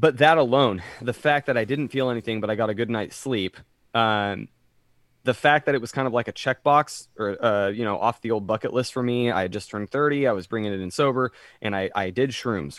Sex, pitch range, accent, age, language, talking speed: male, 115-140 Hz, American, 20-39, English, 260 wpm